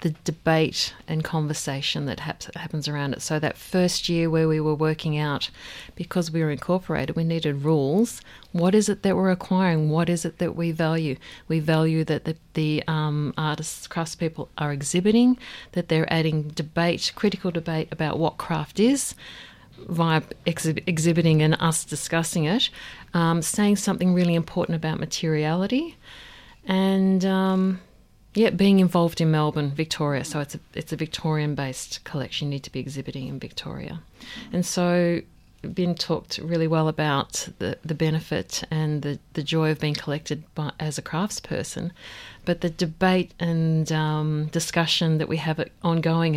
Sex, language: female, English